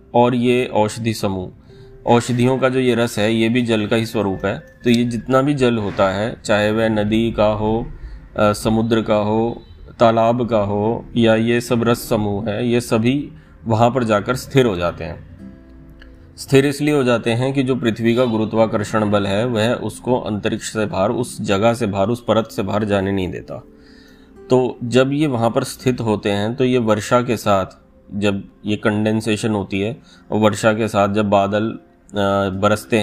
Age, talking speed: 30-49, 185 wpm